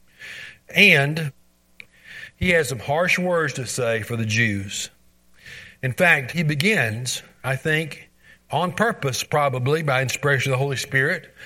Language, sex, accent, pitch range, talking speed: English, male, American, 100-170 Hz, 135 wpm